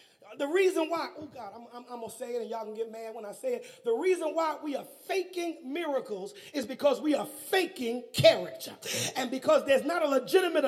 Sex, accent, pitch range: male, American, 250-375 Hz